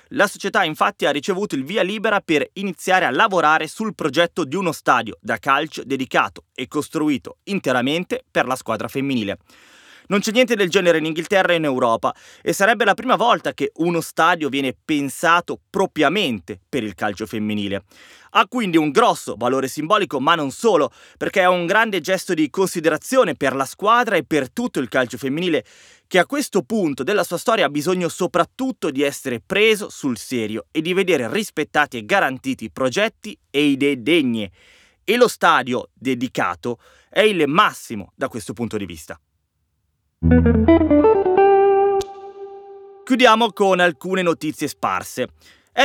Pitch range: 125-195 Hz